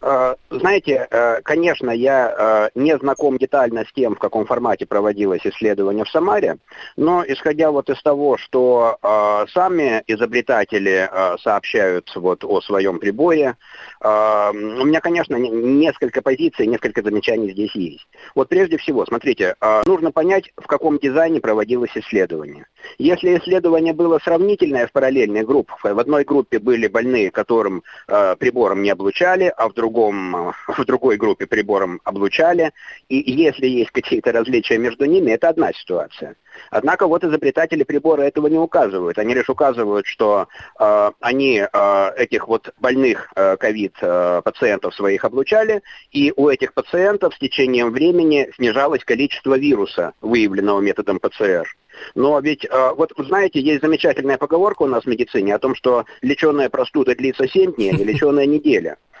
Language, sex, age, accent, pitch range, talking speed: Russian, male, 30-49, native, 110-165 Hz, 140 wpm